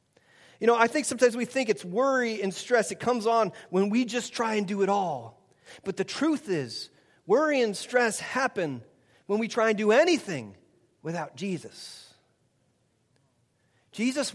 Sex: male